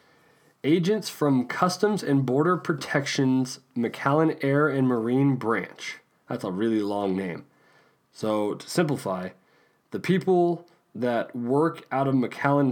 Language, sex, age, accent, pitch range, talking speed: English, male, 20-39, American, 105-145 Hz, 125 wpm